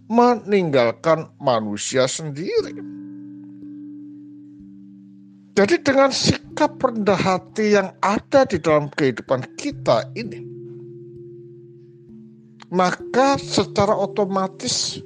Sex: male